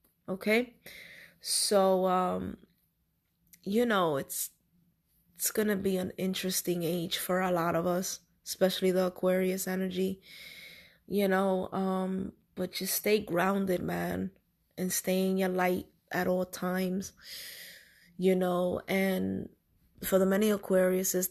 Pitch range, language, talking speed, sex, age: 180-190 Hz, English, 125 wpm, female, 20-39